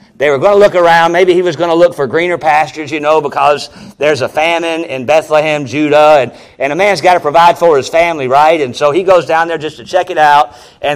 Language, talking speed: English, 255 wpm